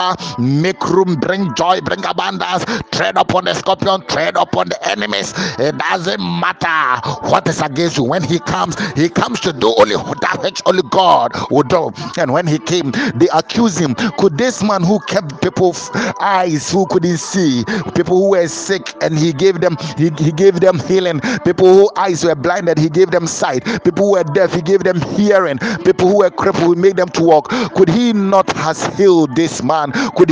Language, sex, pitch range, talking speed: English, male, 160-195 Hz, 190 wpm